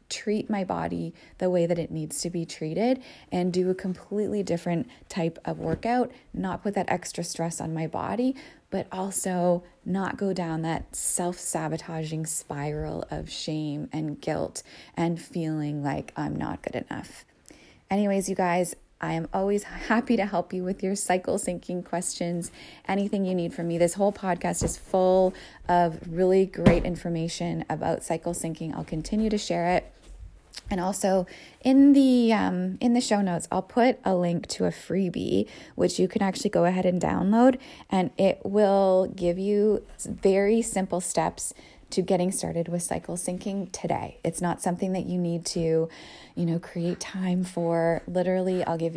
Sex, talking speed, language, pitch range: female, 170 wpm, English, 170-195 Hz